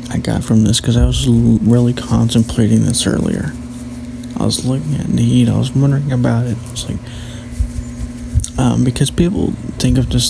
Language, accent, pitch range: English, American, 110-125 Hz